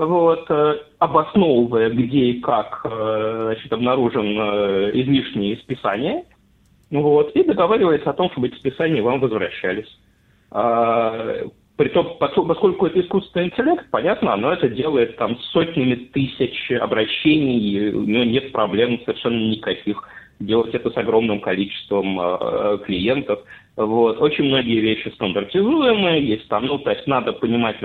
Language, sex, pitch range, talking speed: English, male, 110-155 Hz, 110 wpm